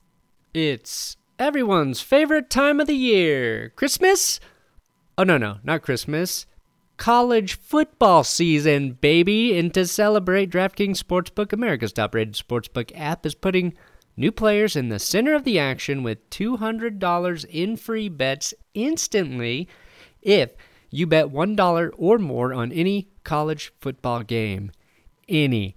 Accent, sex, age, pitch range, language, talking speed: American, male, 30-49, 130-200 Hz, English, 125 wpm